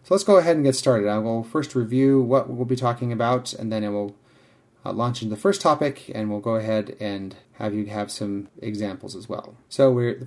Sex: male